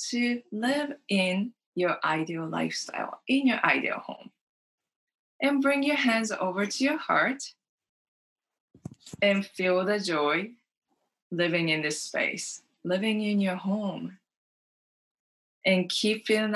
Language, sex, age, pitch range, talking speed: English, female, 20-39, 180-250 Hz, 120 wpm